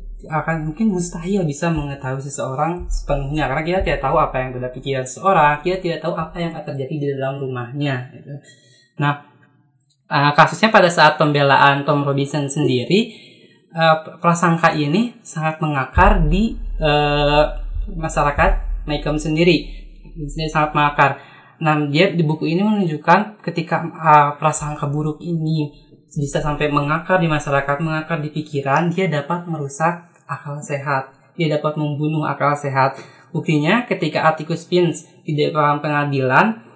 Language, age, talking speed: Indonesian, 20-39, 140 wpm